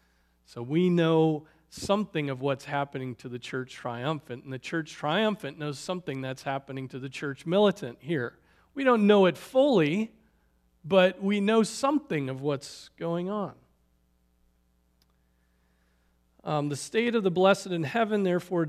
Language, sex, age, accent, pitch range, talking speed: English, male, 40-59, American, 130-180 Hz, 150 wpm